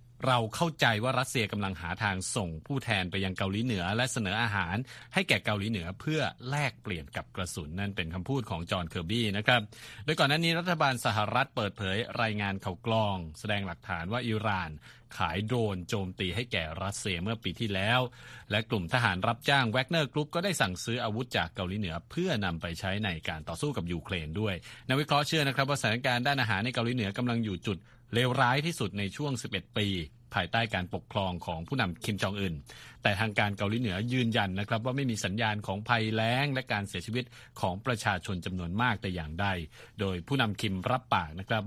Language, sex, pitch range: Thai, male, 95-125 Hz